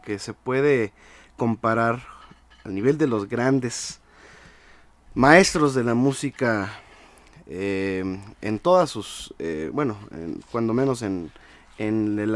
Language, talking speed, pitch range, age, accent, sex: Spanish, 115 wpm, 100-145 Hz, 30-49, Mexican, male